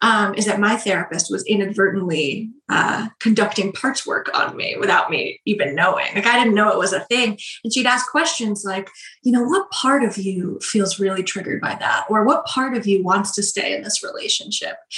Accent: American